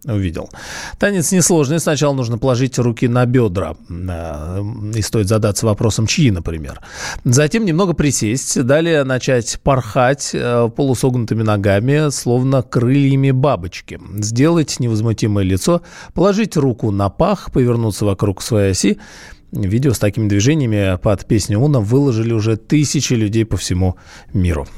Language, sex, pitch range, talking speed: Russian, male, 100-135 Hz, 125 wpm